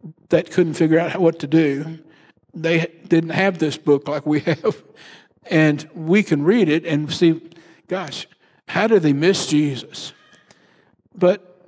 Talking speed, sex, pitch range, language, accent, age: 150 wpm, male, 150-175 Hz, English, American, 60-79